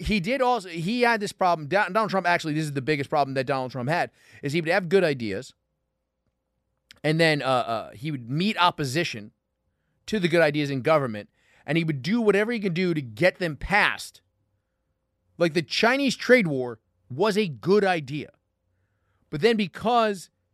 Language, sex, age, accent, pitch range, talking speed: English, male, 30-49, American, 130-200 Hz, 185 wpm